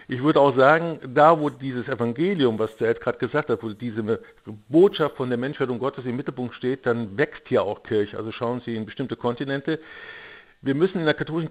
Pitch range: 120-150 Hz